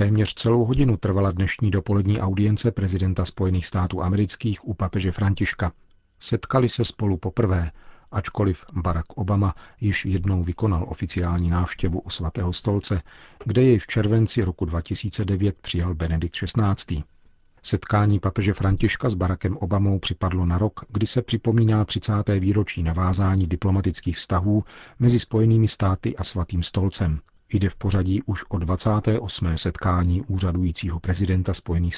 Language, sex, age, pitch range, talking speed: Czech, male, 40-59, 90-105 Hz, 135 wpm